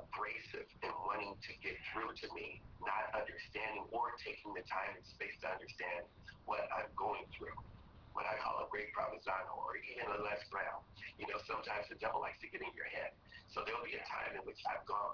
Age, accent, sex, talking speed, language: 40-59, American, male, 205 wpm, English